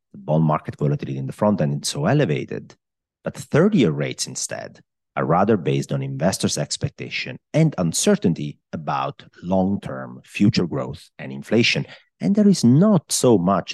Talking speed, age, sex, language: 155 wpm, 40-59, male, English